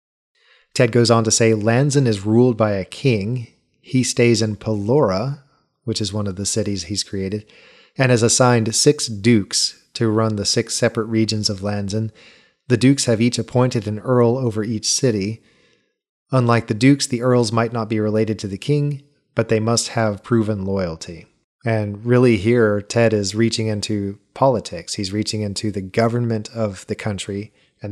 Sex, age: male, 30-49